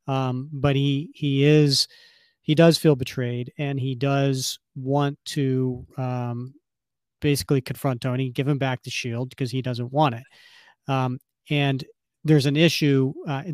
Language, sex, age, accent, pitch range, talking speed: English, male, 40-59, American, 130-145 Hz, 150 wpm